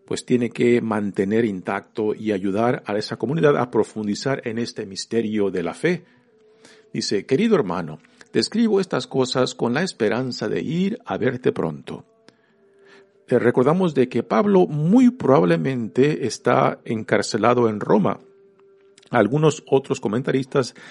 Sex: male